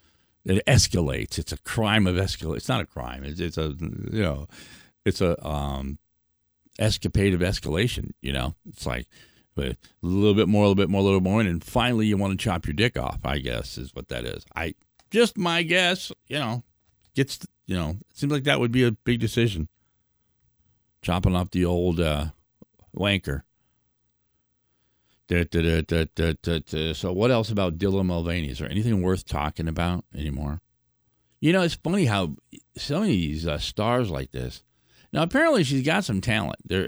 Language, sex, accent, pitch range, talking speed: English, male, American, 75-105 Hz, 190 wpm